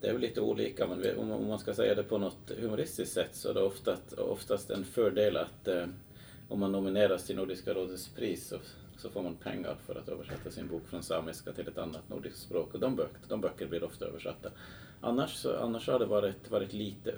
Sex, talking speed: male, 225 wpm